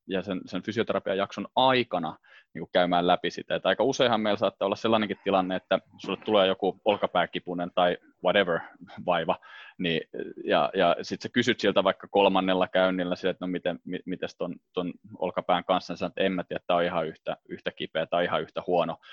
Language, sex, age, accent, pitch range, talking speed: Finnish, male, 20-39, native, 90-105 Hz, 180 wpm